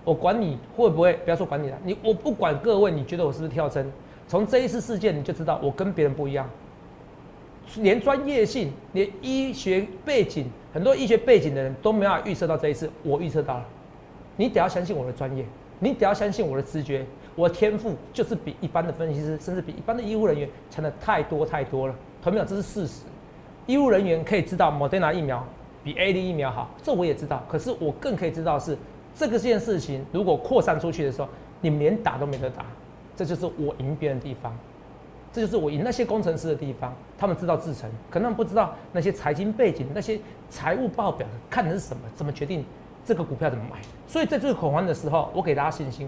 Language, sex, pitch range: Chinese, male, 145-215 Hz